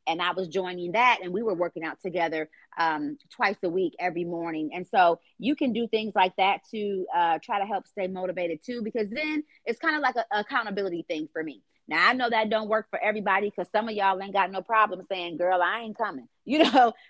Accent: American